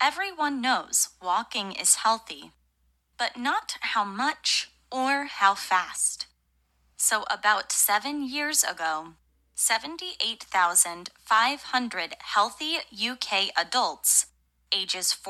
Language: Japanese